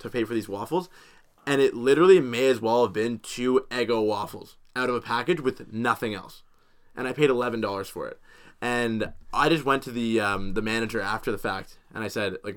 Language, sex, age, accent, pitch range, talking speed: English, male, 20-39, American, 105-130 Hz, 215 wpm